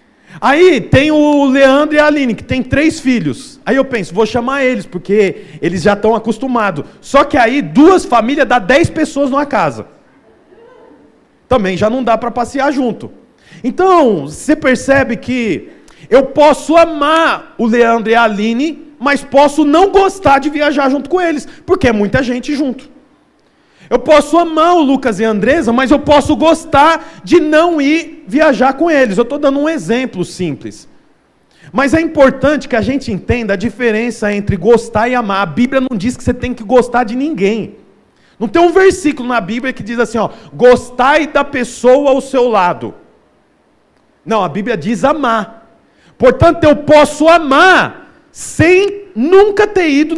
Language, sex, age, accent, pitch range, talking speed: Portuguese, male, 40-59, Brazilian, 235-305 Hz, 170 wpm